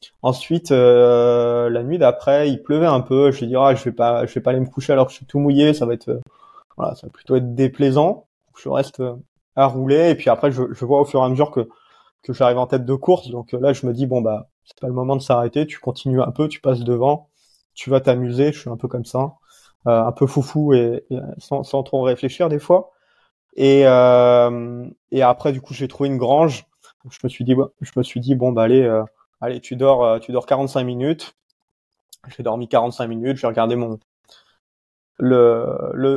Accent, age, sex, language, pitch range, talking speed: French, 20-39, male, French, 120-140 Hz, 230 wpm